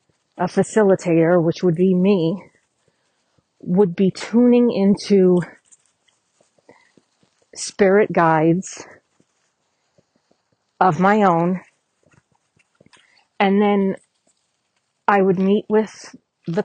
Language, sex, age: English, female, 40-59